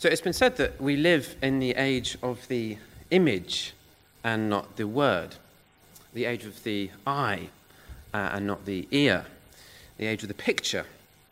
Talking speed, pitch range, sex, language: 170 wpm, 100-130 Hz, male, English